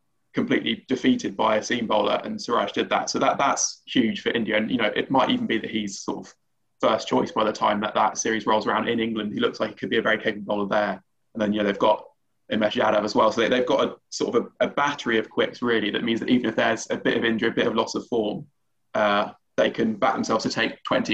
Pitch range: 110-135 Hz